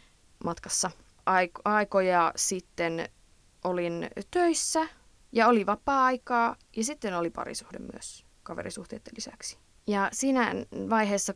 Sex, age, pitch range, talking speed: female, 20-39, 170-220 Hz, 95 wpm